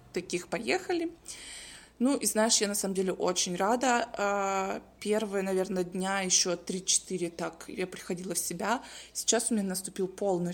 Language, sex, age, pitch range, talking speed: Russian, female, 20-39, 190-230 Hz, 150 wpm